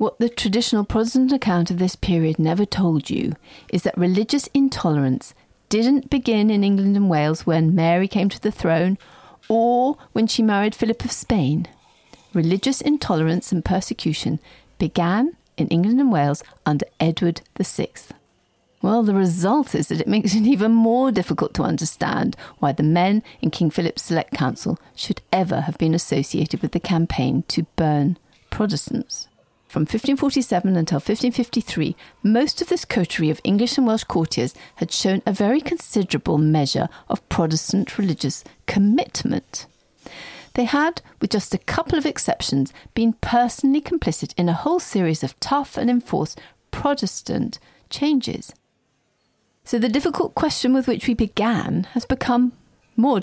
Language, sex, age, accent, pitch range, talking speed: English, female, 40-59, British, 165-245 Hz, 150 wpm